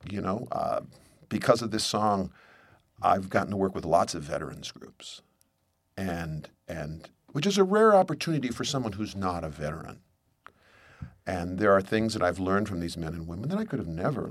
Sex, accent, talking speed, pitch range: male, American, 195 wpm, 90-125 Hz